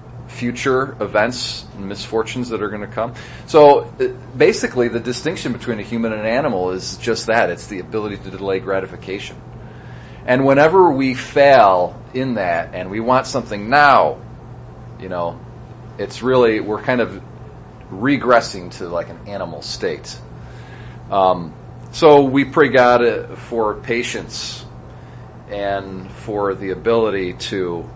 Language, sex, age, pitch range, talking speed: English, male, 40-59, 100-125 Hz, 135 wpm